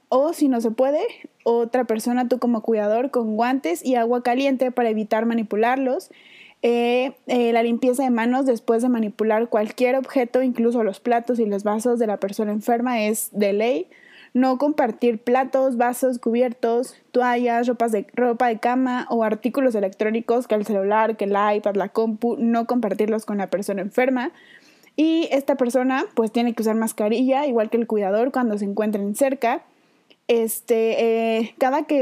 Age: 20-39